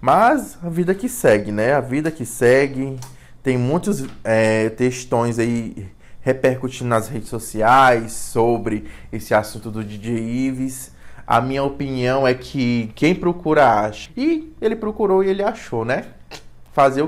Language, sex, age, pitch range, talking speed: Portuguese, male, 20-39, 120-175 Hz, 145 wpm